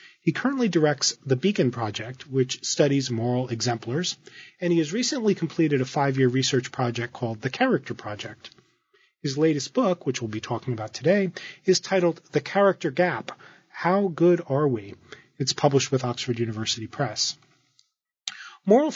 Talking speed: 150 wpm